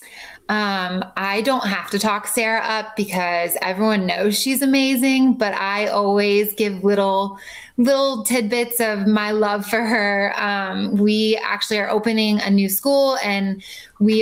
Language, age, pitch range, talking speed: English, 20-39, 195-230 Hz, 150 wpm